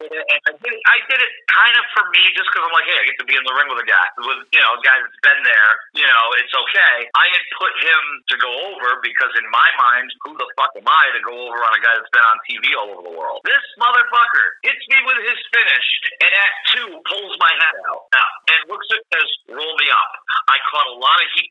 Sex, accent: male, American